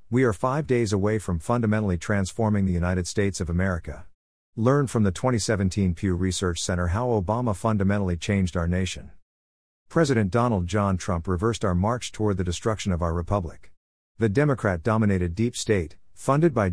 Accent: American